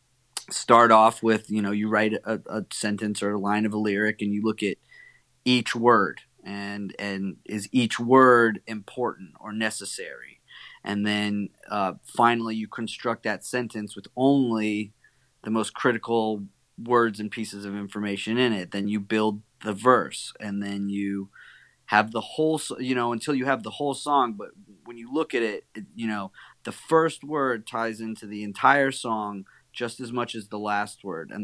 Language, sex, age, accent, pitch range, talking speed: English, male, 30-49, American, 105-125 Hz, 180 wpm